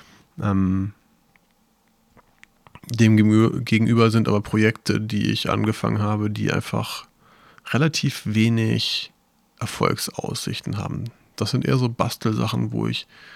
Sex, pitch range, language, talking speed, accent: male, 105-120 Hz, German, 100 wpm, German